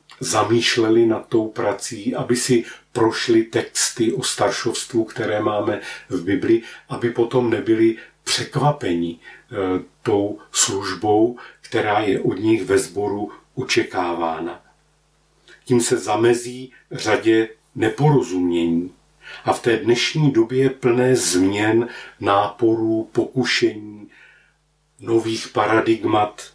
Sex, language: male, Slovak